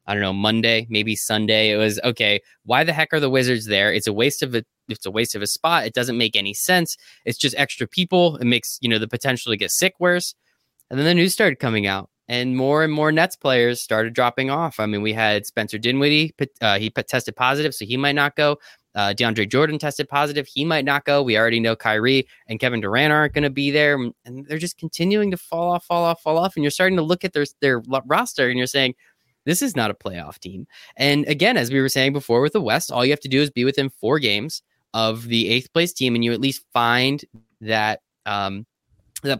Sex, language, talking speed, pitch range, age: male, English, 245 wpm, 115-150 Hz, 20-39